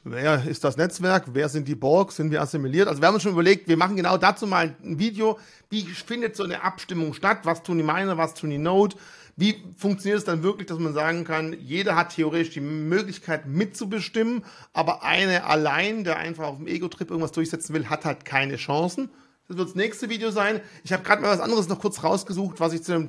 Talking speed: 225 wpm